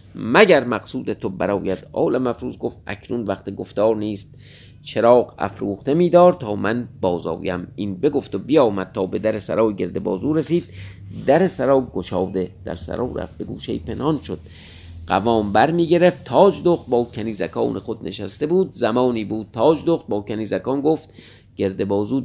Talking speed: 150 wpm